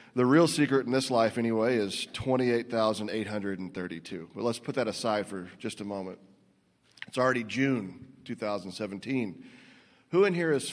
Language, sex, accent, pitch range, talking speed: English, male, American, 105-125 Hz, 145 wpm